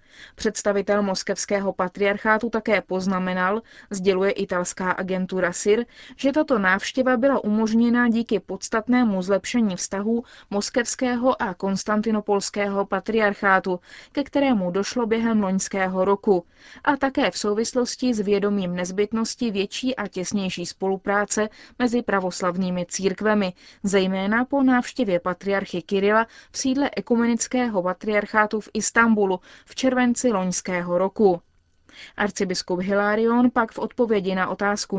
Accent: native